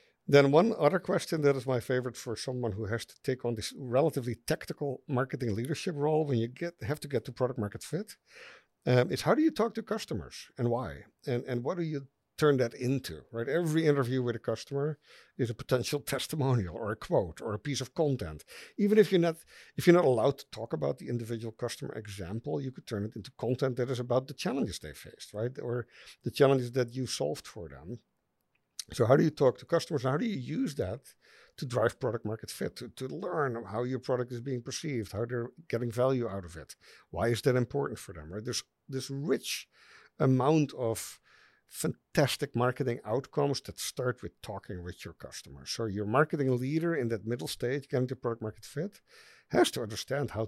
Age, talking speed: 50-69, 210 wpm